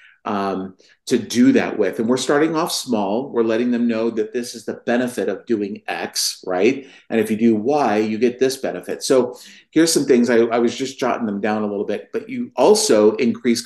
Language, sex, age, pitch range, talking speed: English, male, 40-59, 105-125 Hz, 220 wpm